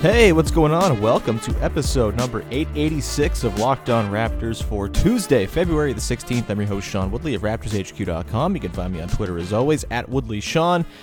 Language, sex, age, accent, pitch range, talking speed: English, male, 30-49, American, 105-150 Hz, 190 wpm